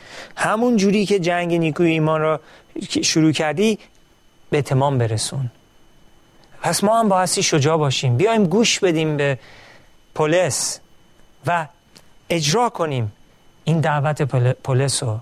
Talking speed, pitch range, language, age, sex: 120 wpm, 120-160 Hz, Persian, 40-59, male